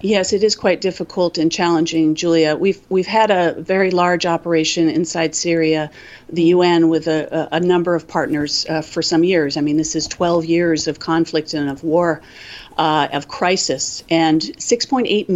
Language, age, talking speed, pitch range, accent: English, 40-59, 175 wpm, 165-195 Hz, American